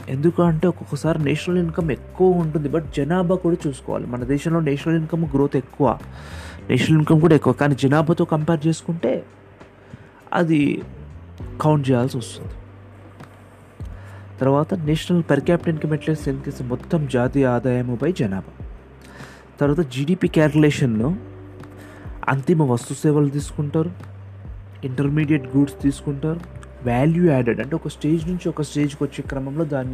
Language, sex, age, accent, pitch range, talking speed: Telugu, male, 30-49, native, 100-155 Hz, 120 wpm